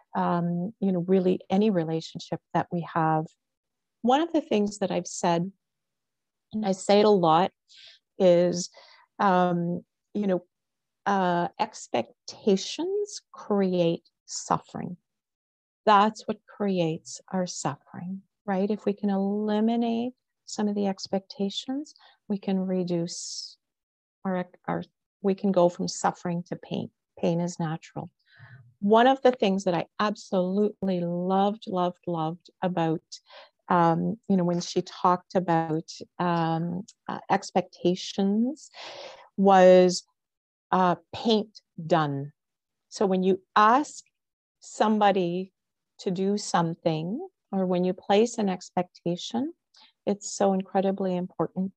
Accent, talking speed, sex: American, 120 wpm, female